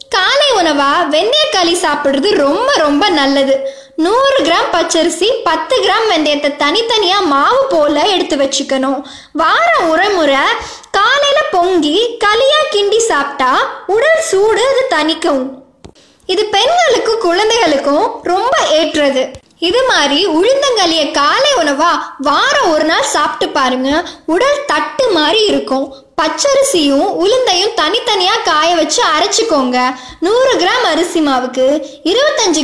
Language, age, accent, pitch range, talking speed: Tamil, 20-39, native, 280-380 Hz, 95 wpm